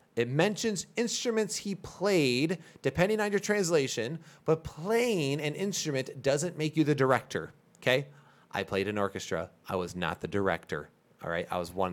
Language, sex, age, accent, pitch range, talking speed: English, male, 30-49, American, 110-170 Hz, 165 wpm